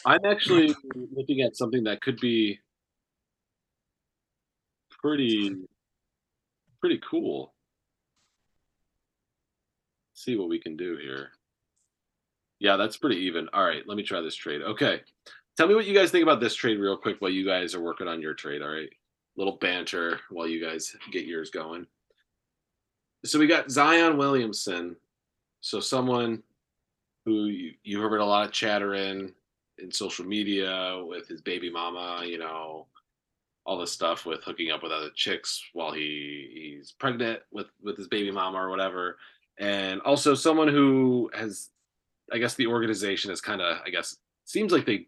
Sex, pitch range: male, 95-135 Hz